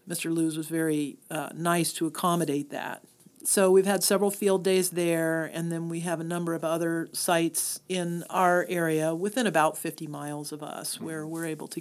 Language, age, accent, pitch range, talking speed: English, 40-59, American, 160-190 Hz, 195 wpm